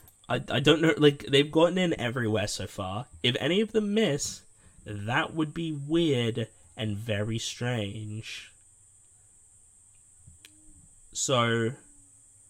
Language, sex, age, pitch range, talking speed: English, male, 10-29, 105-135 Hz, 115 wpm